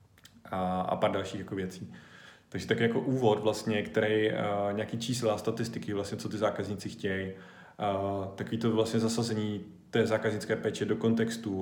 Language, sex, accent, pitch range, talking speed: Czech, male, native, 100-115 Hz, 155 wpm